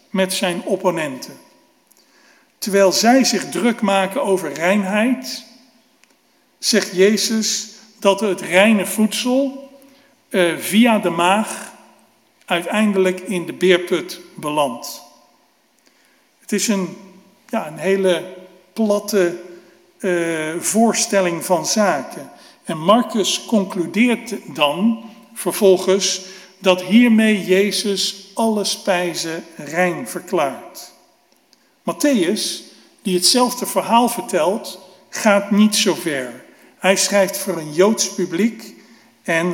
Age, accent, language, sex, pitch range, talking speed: 50-69, Dutch, Dutch, male, 180-220 Hz, 95 wpm